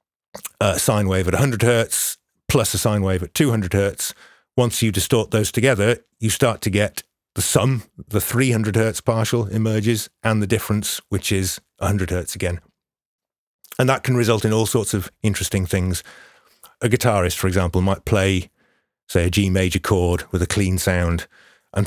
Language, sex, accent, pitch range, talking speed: English, male, British, 95-115 Hz, 175 wpm